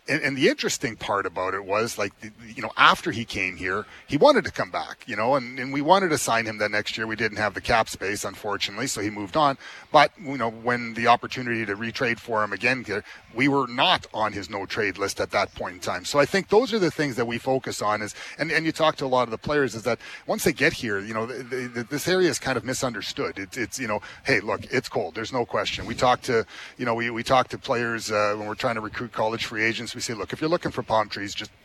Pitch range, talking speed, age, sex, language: 110-130 Hz, 275 wpm, 40-59, male, English